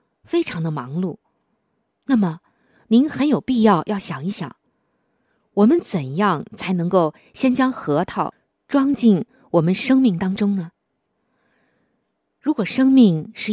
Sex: female